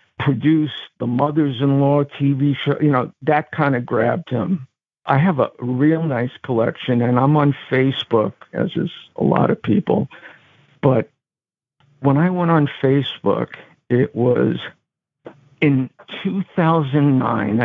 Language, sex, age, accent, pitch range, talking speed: English, male, 50-69, American, 125-145 Hz, 130 wpm